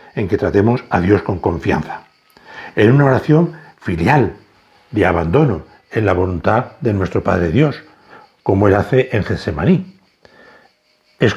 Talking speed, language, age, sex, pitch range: 135 wpm, Spanish, 60-79, male, 100-145 Hz